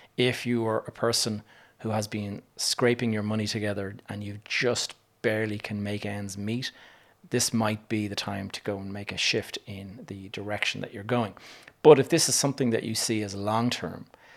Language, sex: English, male